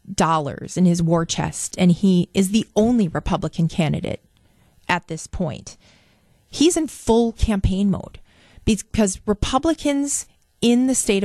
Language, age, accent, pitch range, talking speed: English, 40-59, American, 170-210 Hz, 135 wpm